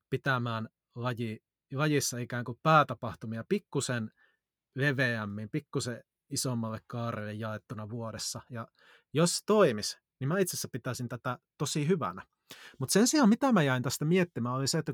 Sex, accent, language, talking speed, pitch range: male, native, Finnish, 140 wpm, 115-155 Hz